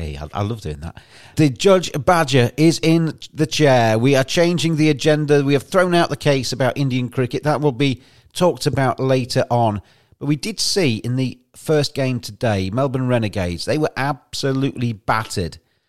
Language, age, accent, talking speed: English, 40-59, British, 180 wpm